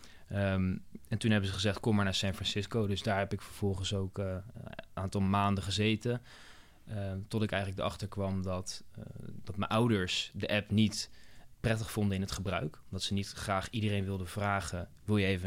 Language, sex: Dutch, male